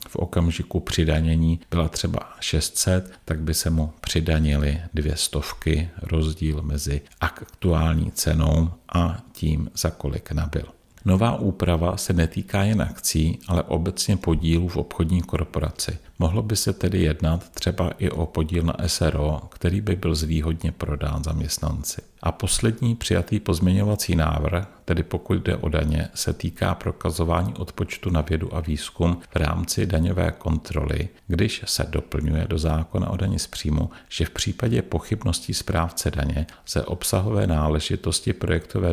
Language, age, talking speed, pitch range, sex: Czech, 50-69, 140 wpm, 80-90 Hz, male